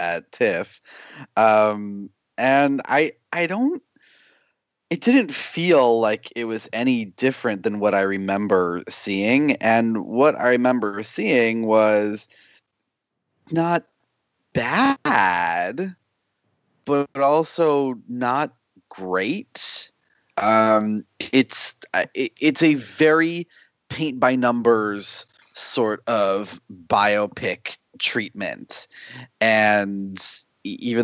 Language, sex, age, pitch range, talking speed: English, male, 30-49, 95-130 Hz, 85 wpm